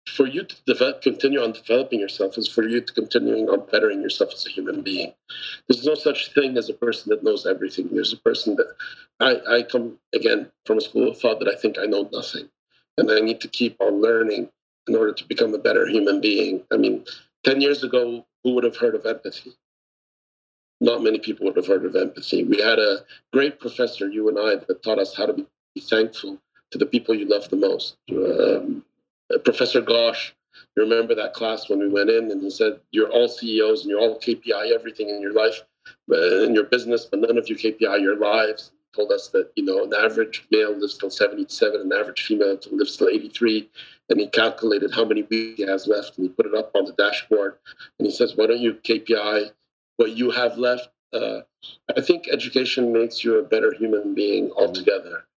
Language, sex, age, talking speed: English, male, 50-69, 210 wpm